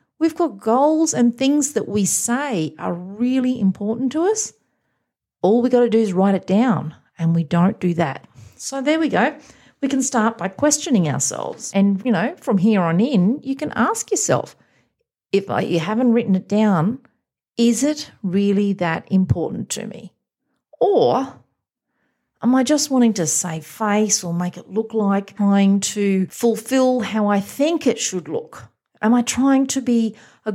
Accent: Australian